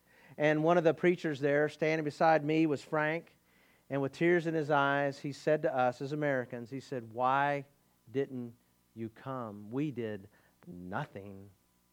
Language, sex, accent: English, male, American